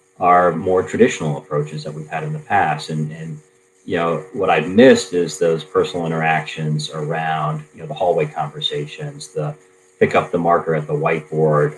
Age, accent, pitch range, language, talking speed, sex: 30-49, American, 75-95 Hz, English, 180 wpm, male